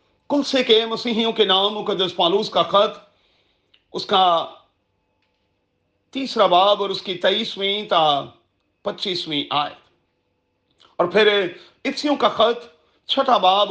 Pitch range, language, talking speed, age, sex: 180-240 Hz, Urdu, 120 wpm, 40-59, male